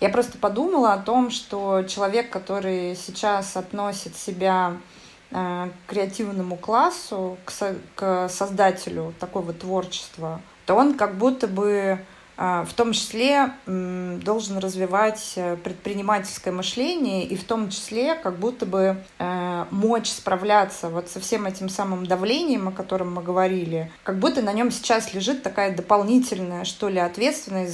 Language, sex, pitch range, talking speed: Russian, female, 180-215 Hz, 130 wpm